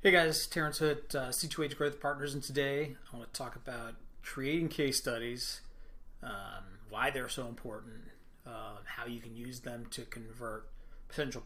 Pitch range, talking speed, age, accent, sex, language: 115-145 Hz, 170 wpm, 30-49, American, male, English